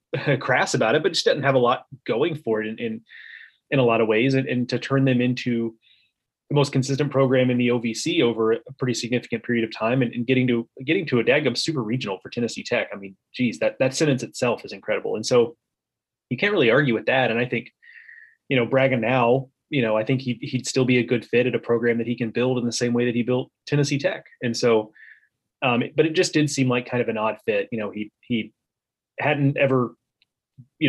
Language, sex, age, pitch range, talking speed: English, male, 20-39, 115-135 Hz, 240 wpm